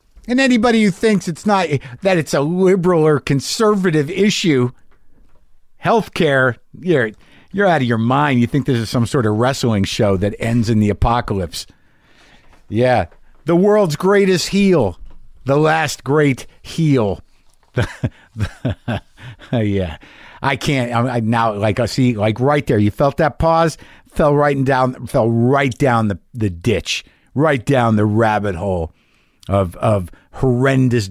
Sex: male